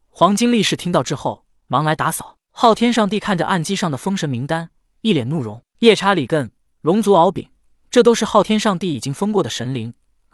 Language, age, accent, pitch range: Chinese, 20-39, native, 140-195 Hz